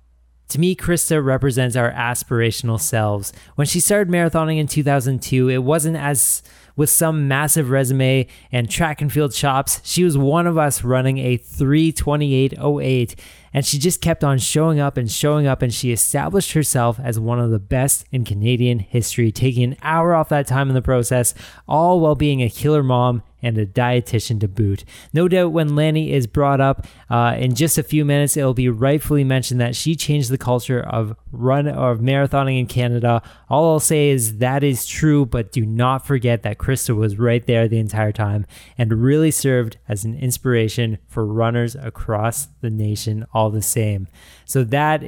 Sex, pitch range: male, 115-145 Hz